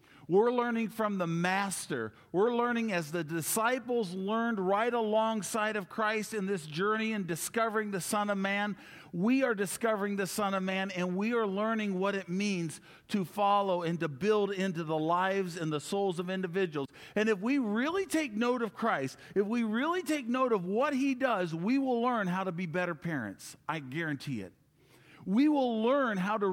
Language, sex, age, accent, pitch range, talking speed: English, male, 50-69, American, 165-220 Hz, 190 wpm